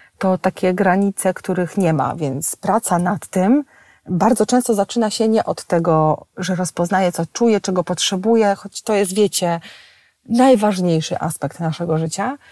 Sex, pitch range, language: female, 170-215 Hz, Polish